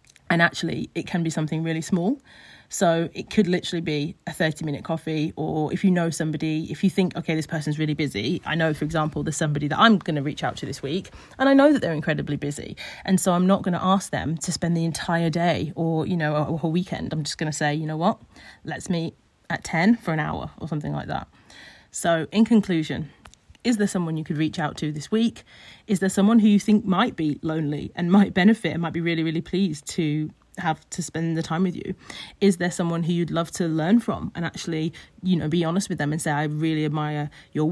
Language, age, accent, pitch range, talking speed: English, 30-49, British, 155-185 Hz, 240 wpm